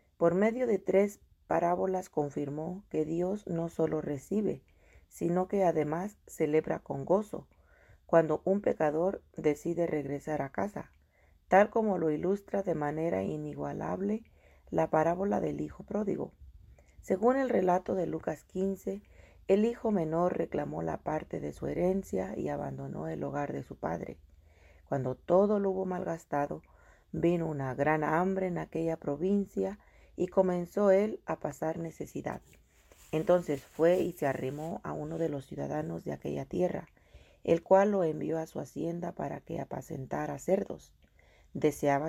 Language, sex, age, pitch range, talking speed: Spanish, female, 40-59, 135-180 Hz, 145 wpm